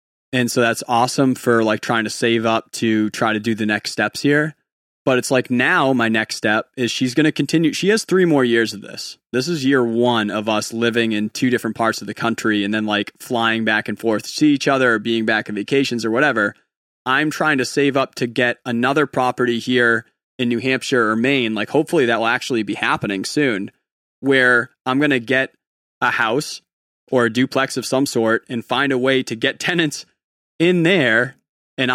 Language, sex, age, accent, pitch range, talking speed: English, male, 20-39, American, 115-140 Hz, 215 wpm